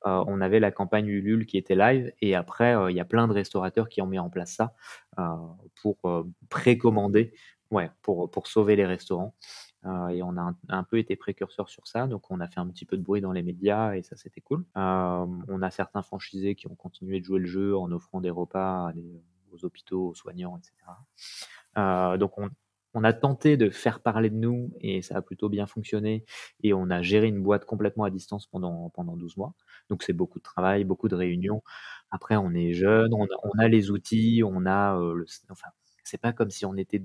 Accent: French